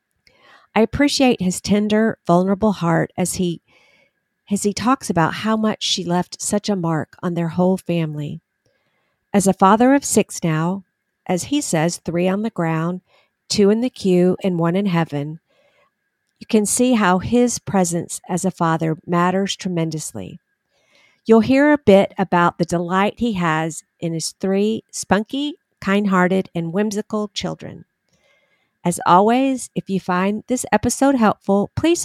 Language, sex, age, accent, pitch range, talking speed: English, female, 50-69, American, 175-215 Hz, 150 wpm